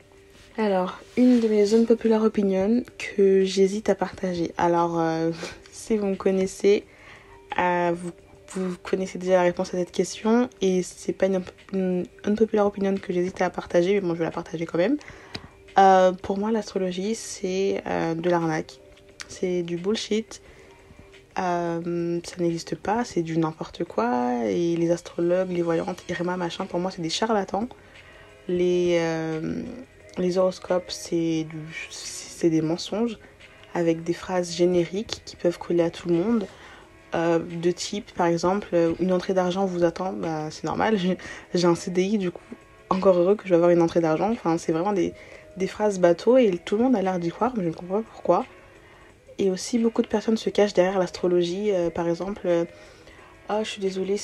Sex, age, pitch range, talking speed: female, 20-39, 170-200 Hz, 180 wpm